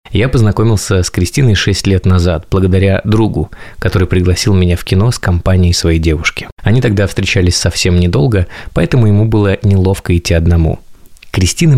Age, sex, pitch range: 20-39, male, 90-110 Hz